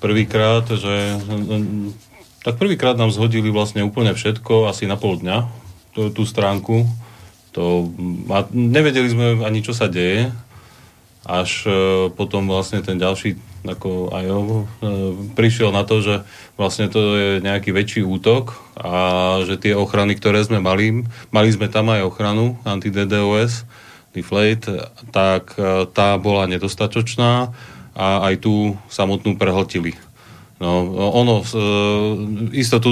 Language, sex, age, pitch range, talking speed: Slovak, male, 30-49, 95-110 Hz, 130 wpm